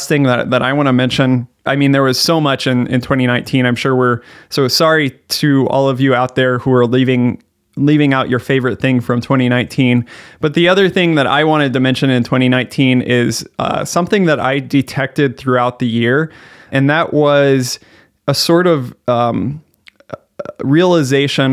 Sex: male